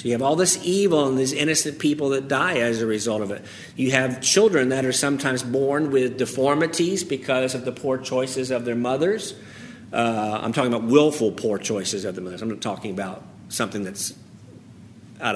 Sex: male